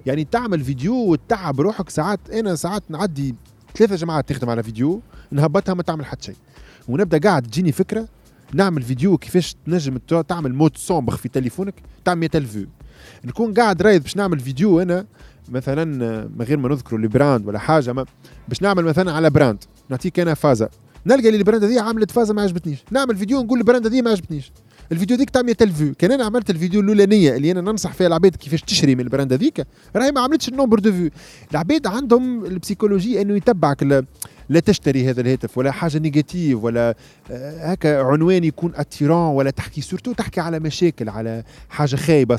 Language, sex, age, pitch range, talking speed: Arabic, male, 20-39, 135-200 Hz, 175 wpm